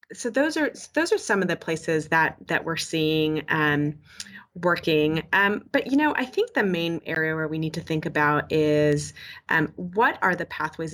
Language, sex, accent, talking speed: English, female, American, 195 wpm